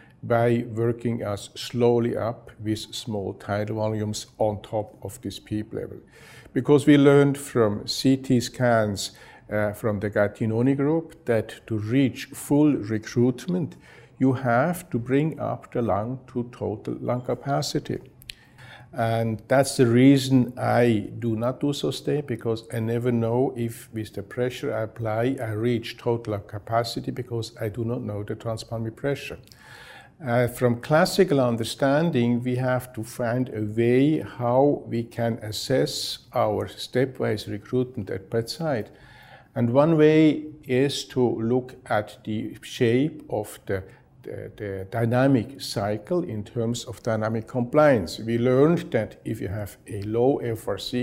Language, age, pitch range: English, 50-69, 110-130 Hz